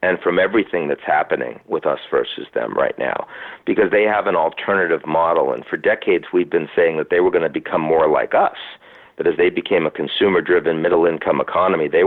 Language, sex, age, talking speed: English, male, 50-69, 215 wpm